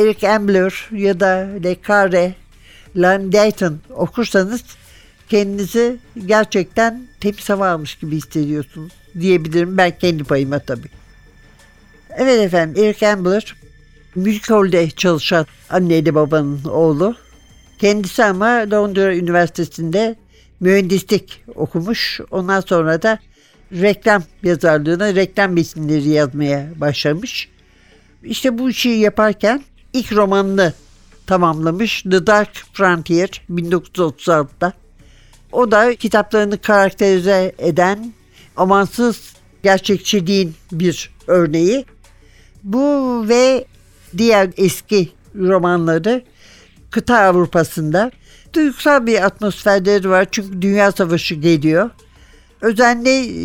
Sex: male